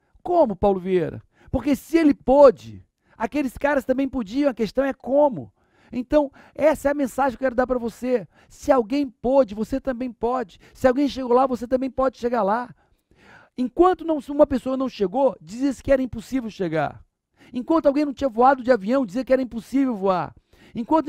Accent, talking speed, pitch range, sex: Brazilian, 185 wpm, 210-260 Hz, male